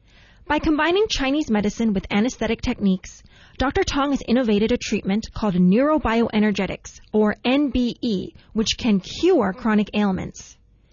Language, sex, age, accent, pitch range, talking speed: English, female, 20-39, American, 205-275 Hz, 120 wpm